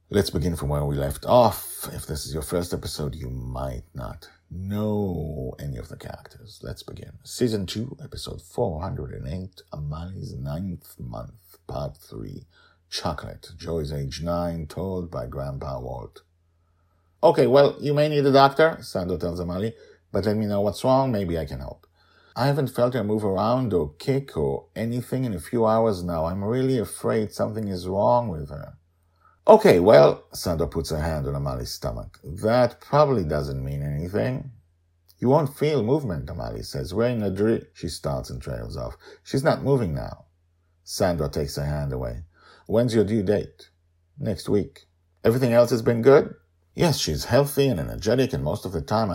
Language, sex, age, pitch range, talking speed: English, male, 50-69, 85-120 Hz, 175 wpm